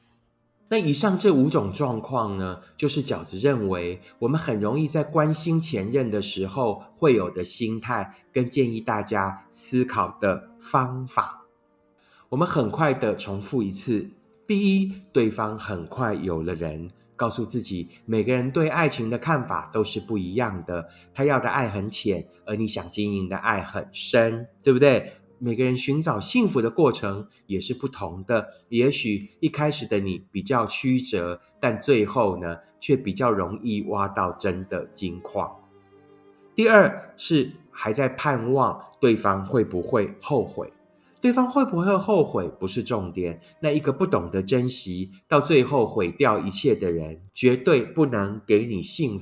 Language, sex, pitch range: Chinese, male, 100-140 Hz